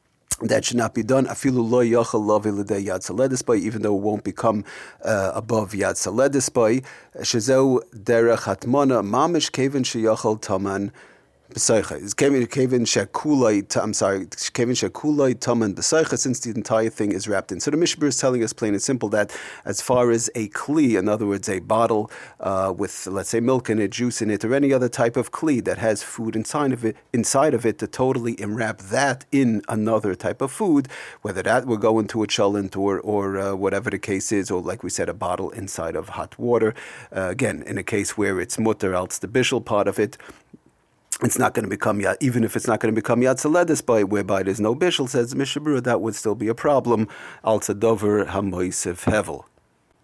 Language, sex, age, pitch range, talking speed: English, male, 40-59, 105-125 Hz, 190 wpm